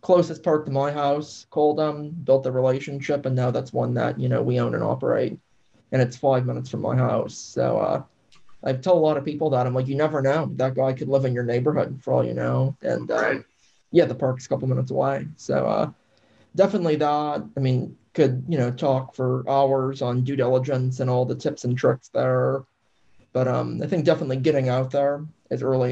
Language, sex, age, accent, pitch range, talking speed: English, male, 20-39, American, 130-145 Hz, 220 wpm